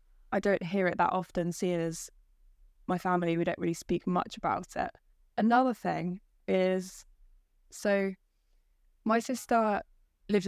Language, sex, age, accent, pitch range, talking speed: English, female, 10-29, British, 175-195 Hz, 135 wpm